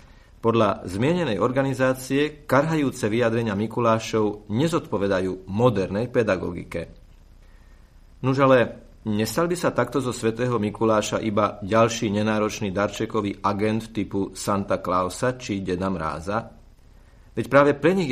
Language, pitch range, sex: Slovak, 100-130 Hz, male